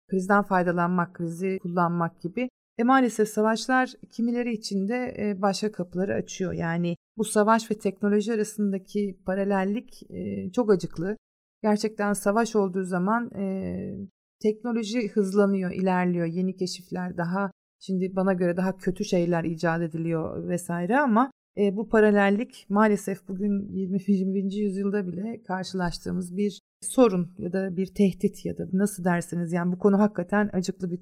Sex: female